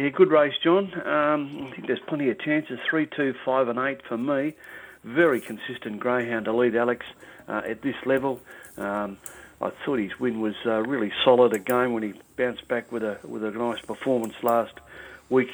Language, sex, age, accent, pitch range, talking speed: English, male, 60-79, Australian, 115-130 Hz, 195 wpm